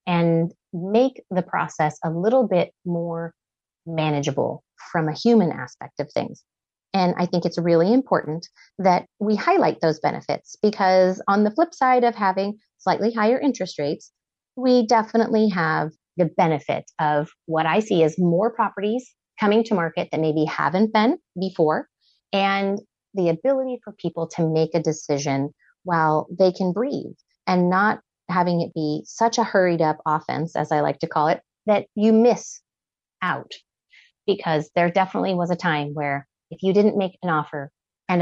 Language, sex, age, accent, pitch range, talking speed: English, female, 30-49, American, 160-205 Hz, 165 wpm